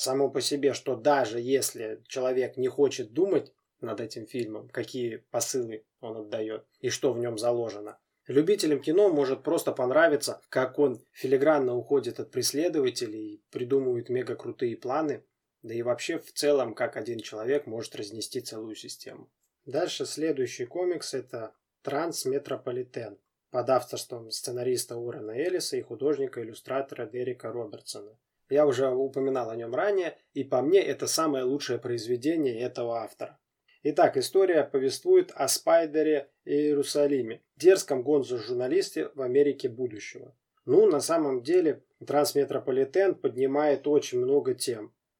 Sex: male